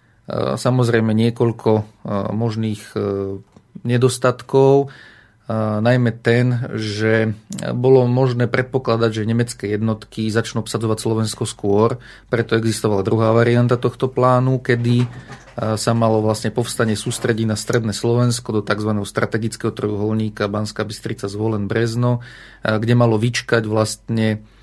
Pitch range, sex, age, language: 110-125 Hz, male, 40-59, Slovak